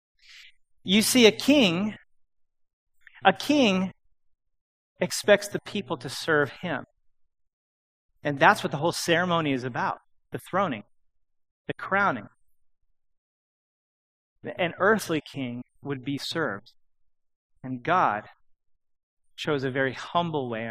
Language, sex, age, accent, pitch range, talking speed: English, male, 30-49, American, 120-180 Hz, 105 wpm